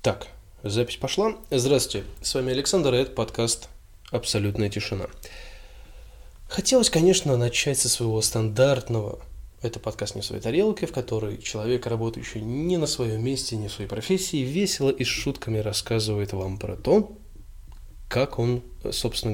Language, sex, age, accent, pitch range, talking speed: Russian, male, 20-39, native, 100-130 Hz, 145 wpm